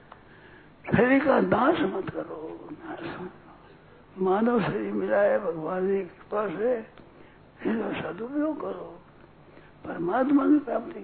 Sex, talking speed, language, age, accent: male, 65 wpm, Hindi, 60-79, native